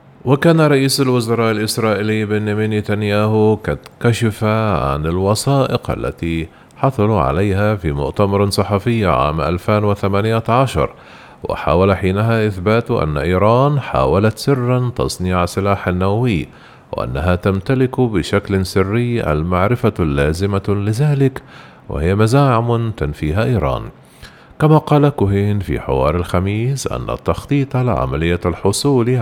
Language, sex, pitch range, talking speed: Arabic, male, 90-115 Hz, 100 wpm